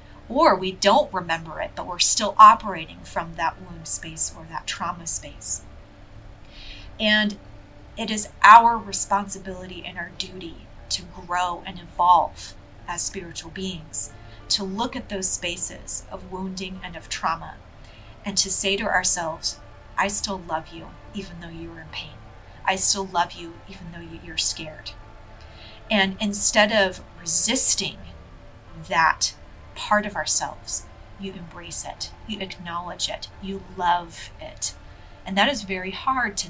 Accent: American